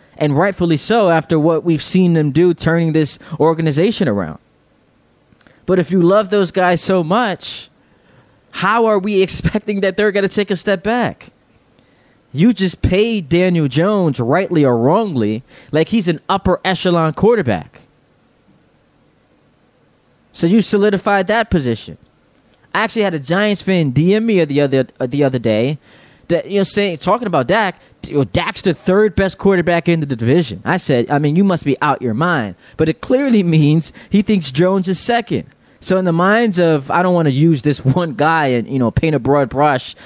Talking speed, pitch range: 180 wpm, 135-185 Hz